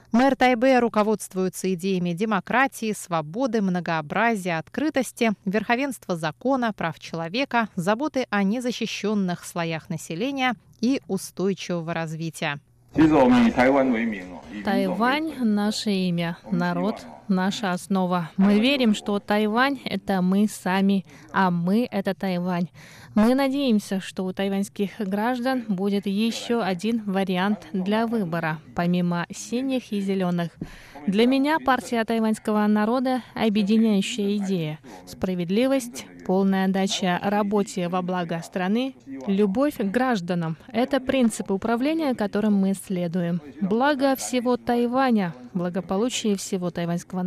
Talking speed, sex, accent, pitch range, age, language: 105 wpm, female, native, 185-240 Hz, 20-39, Russian